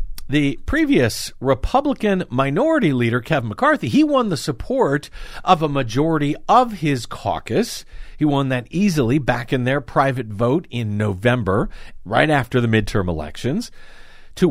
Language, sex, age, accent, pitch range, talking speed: English, male, 50-69, American, 120-165 Hz, 140 wpm